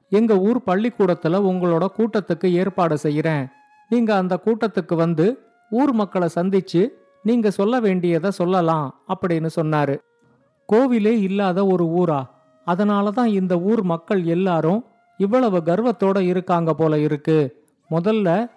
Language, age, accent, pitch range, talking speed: Tamil, 50-69, native, 165-215 Hz, 115 wpm